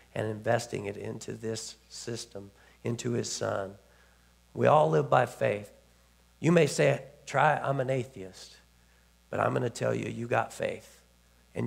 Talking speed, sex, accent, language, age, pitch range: 155 wpm, male, American, English, 50-69, 100-135 Hz